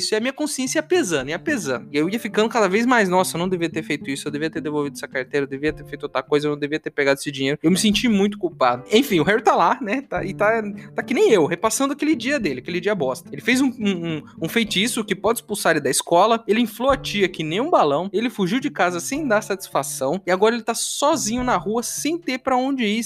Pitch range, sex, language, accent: 160-245 Hz, male, Portuguese, Brazilian